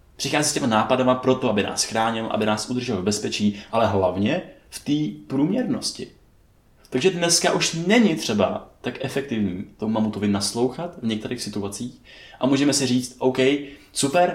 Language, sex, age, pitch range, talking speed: Czech, male, 20-39, 105-140 Hz, 155 wpm